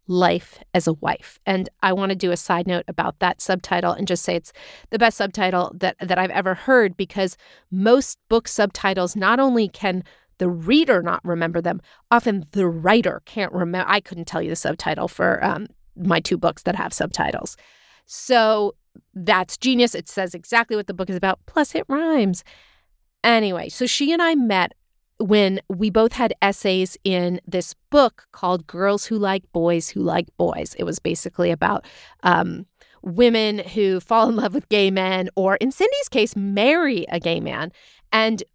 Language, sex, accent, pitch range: English, female, American, 180-230 Hz